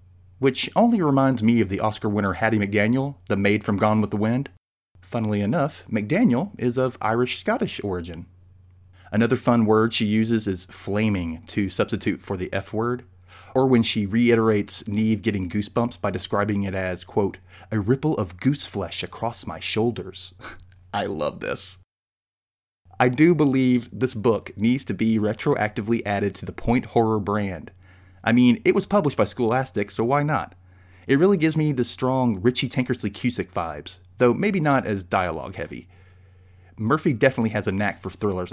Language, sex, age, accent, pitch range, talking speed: English, male, 30-49, American, 95-120 Hz, 170 wpm